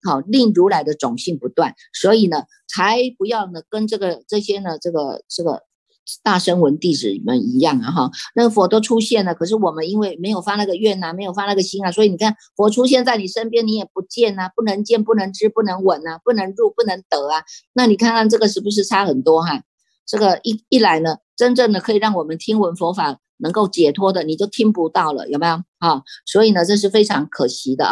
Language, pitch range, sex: Chinese, 170-220 Hz, female